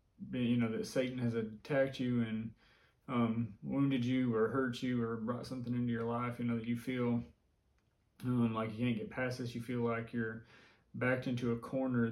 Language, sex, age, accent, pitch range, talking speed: English, male, 20-39, American, 115-125 Hz, 200 wpm